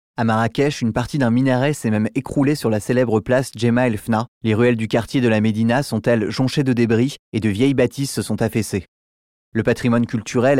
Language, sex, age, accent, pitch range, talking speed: French, male, 20-39, French, 110-130 Hz, 215 wpm